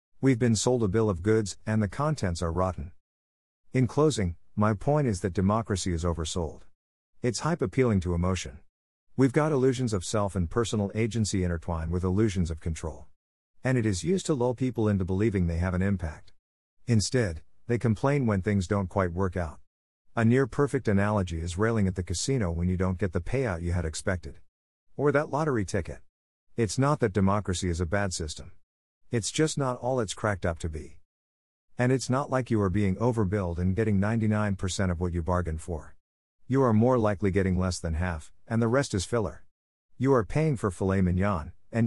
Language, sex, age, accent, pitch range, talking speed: English, male, 50-69, American, 85-120 Hz, 195 wpm